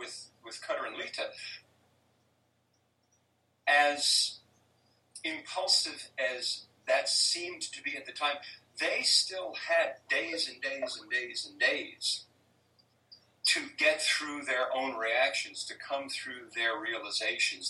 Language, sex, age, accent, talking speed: English, male, 50-69, American, 120 wpm